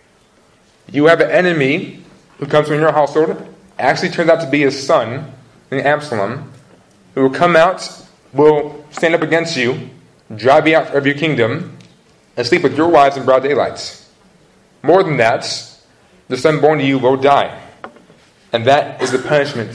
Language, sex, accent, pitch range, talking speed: English, male, American, 130-165 Hz, 170 wpm